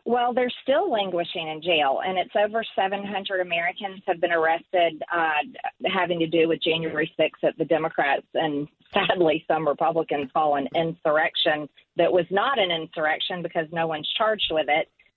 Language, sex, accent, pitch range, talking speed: English, female, American, 165-200 Hz, 165 wpm